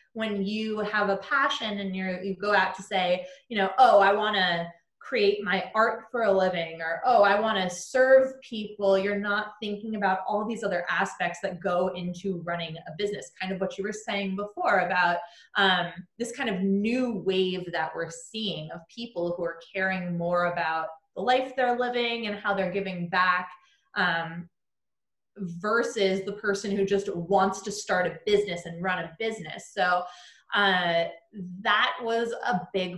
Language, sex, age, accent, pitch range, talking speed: English, female, 20-39, American, 175-215 Hz, 180 wpm